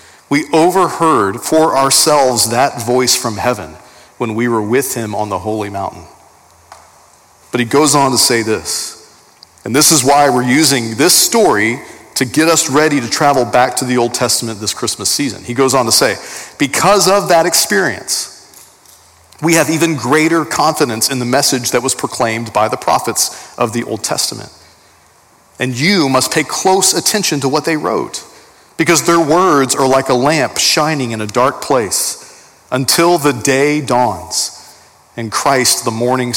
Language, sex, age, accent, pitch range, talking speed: English, male, 40-59, American, 115-155 Hz, 170 wpm